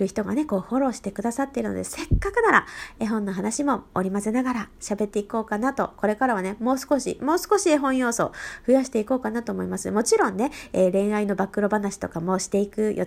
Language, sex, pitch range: Japanese, female, 195-265 Hz